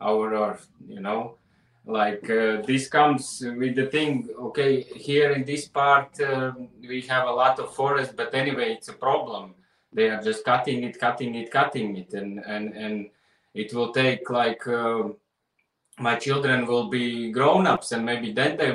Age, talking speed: 20-39, 175 wpm